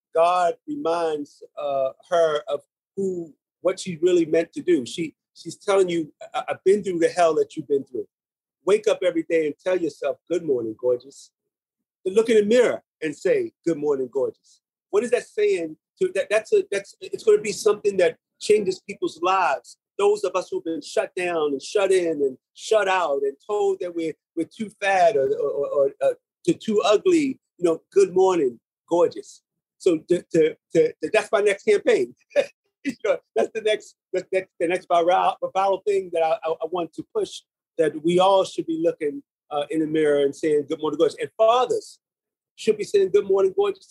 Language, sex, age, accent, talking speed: English, male, 40-59, American, 200 wpm